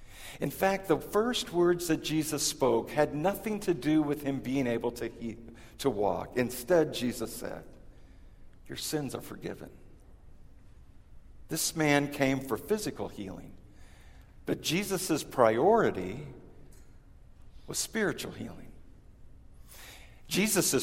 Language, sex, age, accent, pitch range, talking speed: English, male, 50-69, American, 130-190 Hz, 115 wpm